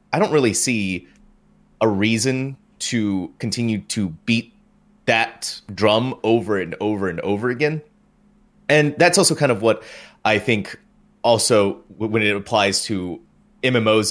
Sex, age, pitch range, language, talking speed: male, 30-49, 105-150 Hz, English, 135 wpm